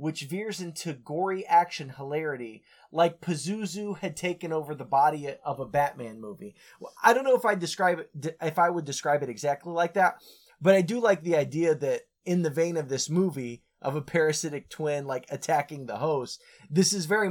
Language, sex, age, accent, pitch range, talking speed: English, male, 20-39, American, 140-185 Hz, 200 wpm